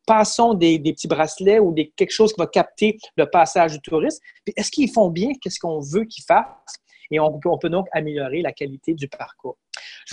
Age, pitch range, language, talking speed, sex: 30-49, 160-210 Hz, French, 215 wpm, male